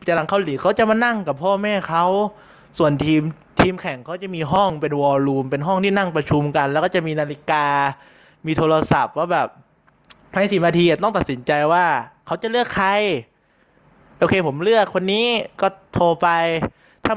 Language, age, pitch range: Thai, 20-39, 150-200 Hz